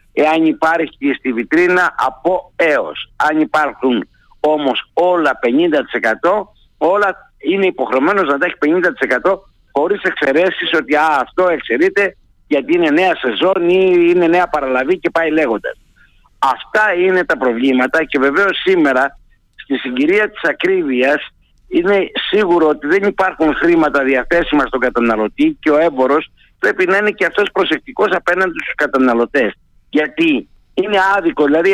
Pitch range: 145-195 Hz